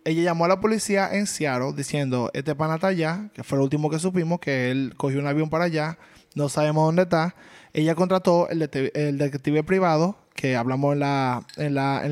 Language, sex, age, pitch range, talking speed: Spanish, male, 20-39, 155-185 Hz, 220 wpm